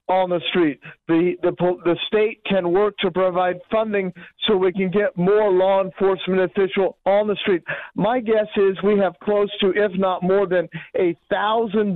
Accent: American